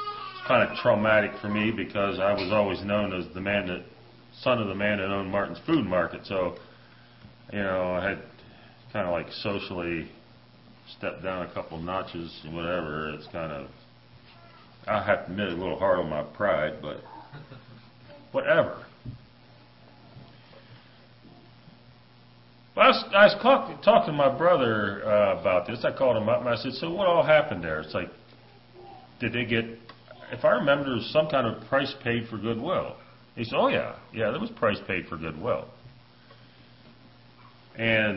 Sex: male